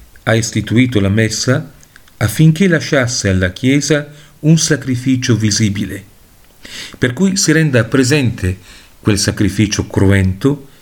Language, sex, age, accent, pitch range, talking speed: Italian, male, 50-69, native, 100-140 Hz, 105 wpm